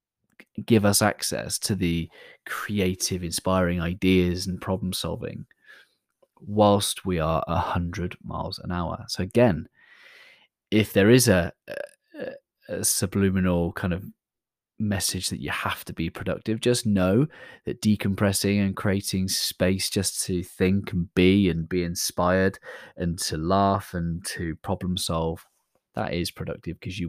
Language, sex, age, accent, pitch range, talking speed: English, male, 20-39, British, 85-105 Hz, 140 wpm